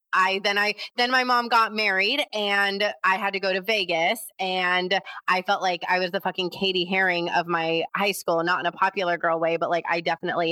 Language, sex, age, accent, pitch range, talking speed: English, female, 20-39, American, 165-185 Hz, 220 wpm